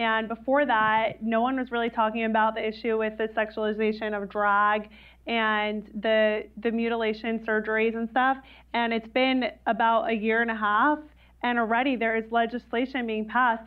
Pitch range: 215-235 Hz